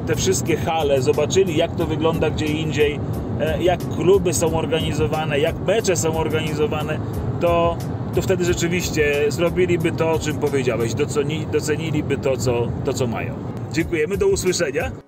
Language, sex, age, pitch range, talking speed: Polish, male, 30-49, 125-150 Hz, 135 wpm